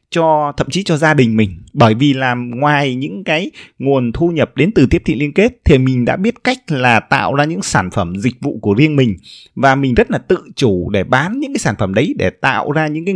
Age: 20-39